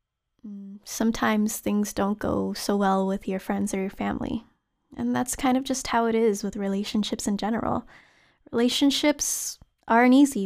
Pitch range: 205-260 Hz